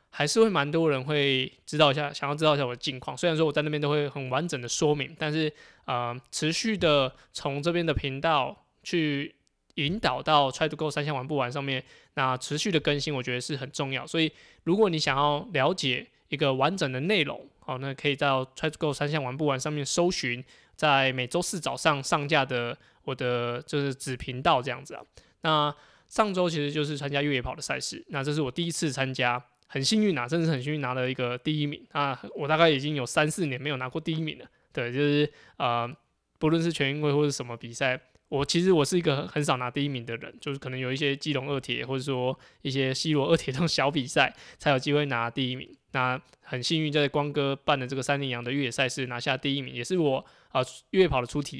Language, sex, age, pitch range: Chinese, male, 20-39, 130-155 Hz